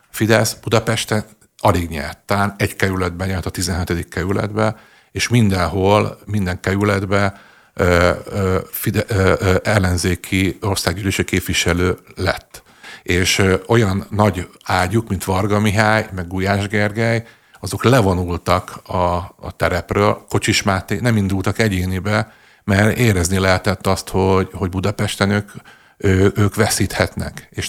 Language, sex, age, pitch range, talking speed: Hungarian, male, 50-69, 95-110 Hz, 110 wpm